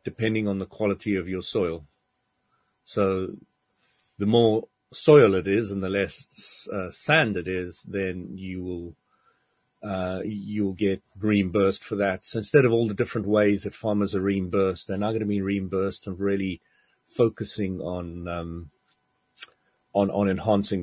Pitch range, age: 95-110 Hz, 40-59